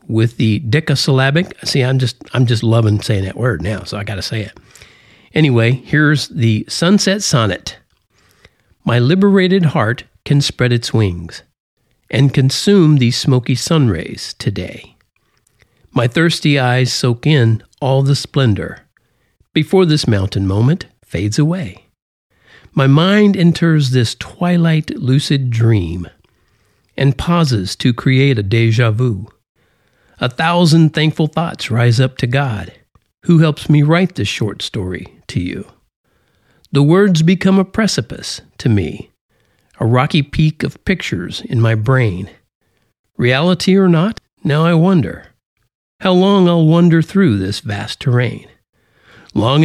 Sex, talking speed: male, 135 wpm